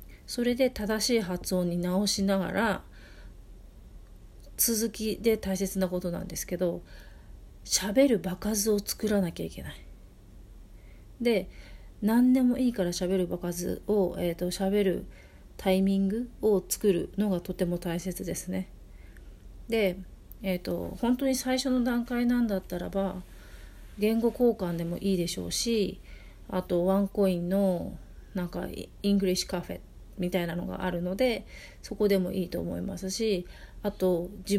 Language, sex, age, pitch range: Japanese, female, 40-59, 175-205 Hz